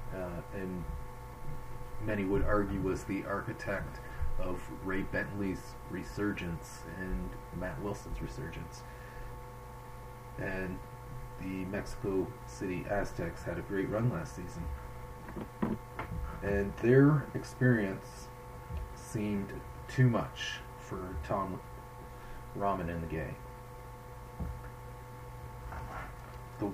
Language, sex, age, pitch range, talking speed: English, male, 40-59, 100-125 Hz, 90 wpm